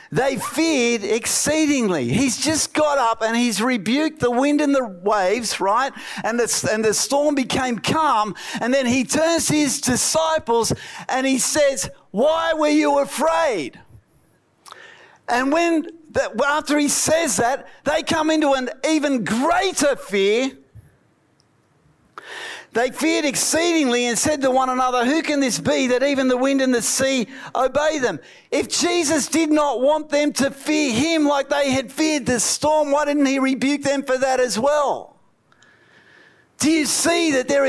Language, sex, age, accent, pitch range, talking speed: English, male, 50-69, Australian, 250-305 Hz, 160 wpm